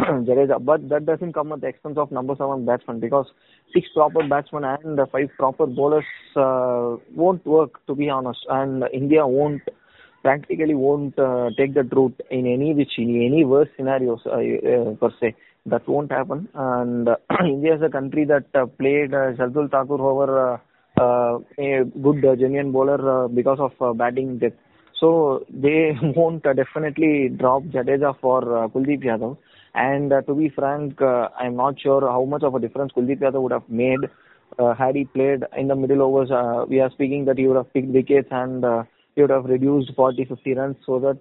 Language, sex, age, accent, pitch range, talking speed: English, male, 20-39, Indian, 125-145 Hz, 190 wpm